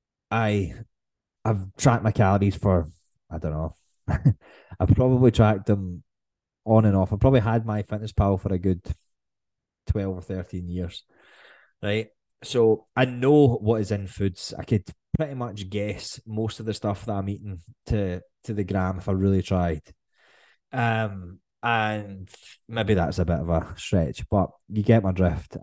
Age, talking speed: 20-39, 165 wpm